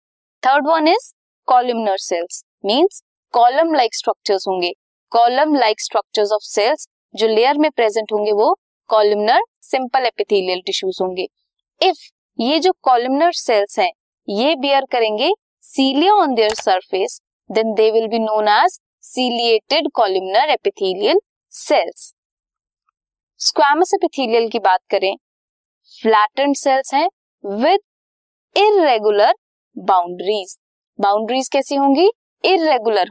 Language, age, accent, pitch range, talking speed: Hindi, 20-39, native, 210-335 Hz, 55 wpm